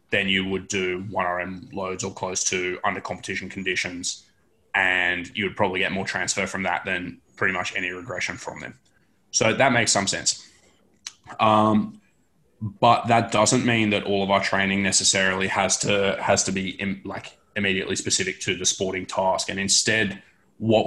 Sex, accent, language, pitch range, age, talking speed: male, Australian, English, 95-105 Hz, 20-39, 175 wpm